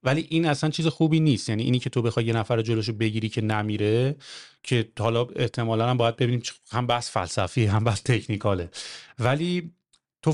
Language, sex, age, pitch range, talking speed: English, male, 30-49, 120-160 Hz, 180 wpm